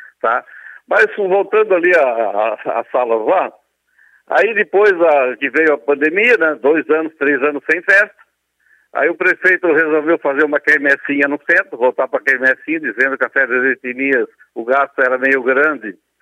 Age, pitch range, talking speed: 60-79, 130-170 Hz, 170 wpm